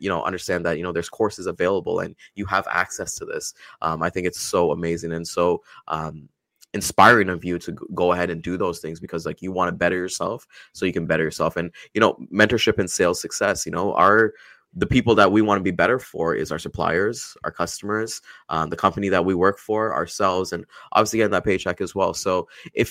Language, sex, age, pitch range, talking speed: English, male, 20-39, 85-110 Hz, 230 wpm